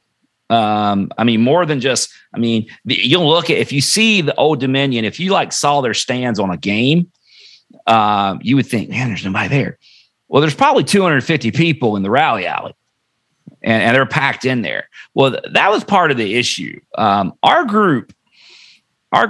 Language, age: English, 40-59